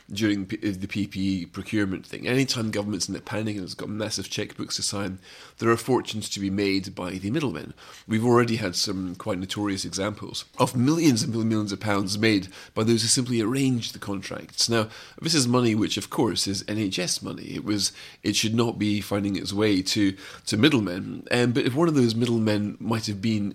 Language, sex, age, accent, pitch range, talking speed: English, male, 30-49, British, 100-120 Hz, 205 wpm